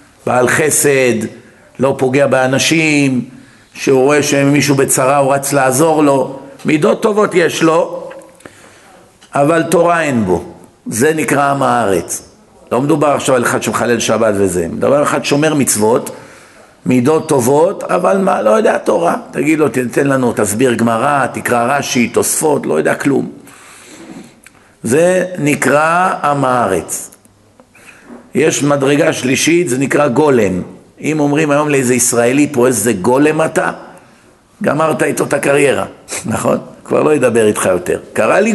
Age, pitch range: 50-69, 130-170 Hz